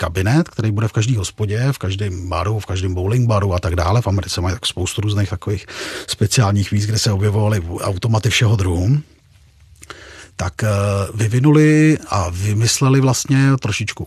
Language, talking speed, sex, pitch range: Czech, 160 wpm, male, 95-115 Hz